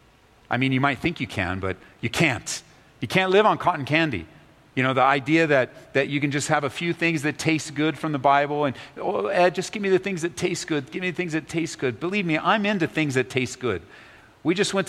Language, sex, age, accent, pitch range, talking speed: English, male, 40-59, American, 130-180 Hz, 260 wpm